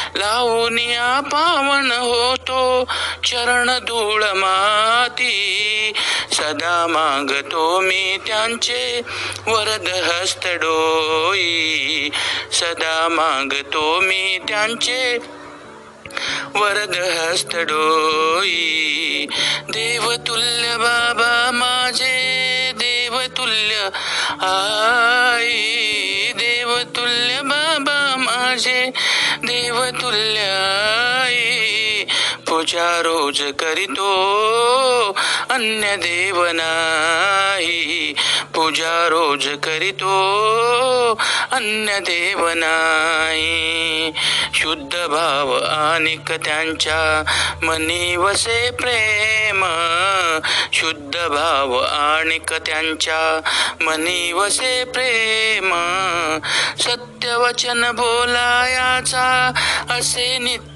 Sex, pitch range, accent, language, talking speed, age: male, 165-245 Hz, native, Marathi, 55 wpm, 50-69